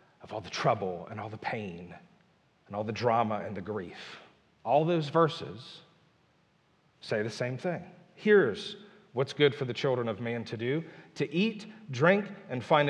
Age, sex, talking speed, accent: 40-59, male, 170 wpm, American